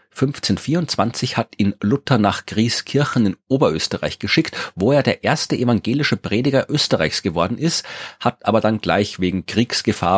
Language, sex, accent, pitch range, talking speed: German, male, German, 95-125 Hz, 140 wpm